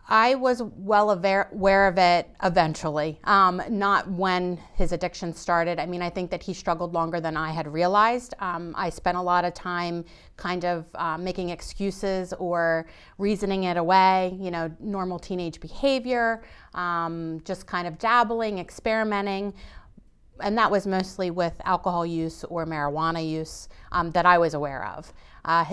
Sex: female